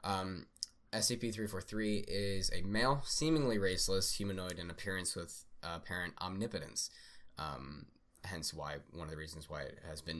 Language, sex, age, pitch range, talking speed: English, male, 10-29, 85-105 Hz, 145 wpm